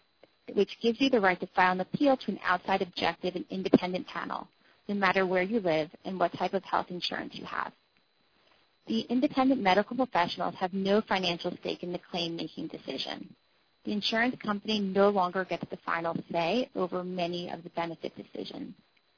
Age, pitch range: 30-49, 180-215 Hz